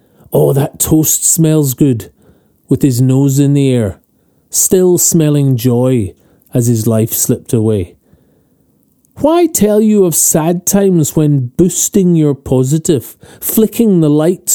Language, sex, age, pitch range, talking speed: English, male, 30-49, 125-165 Hz, 130 wpm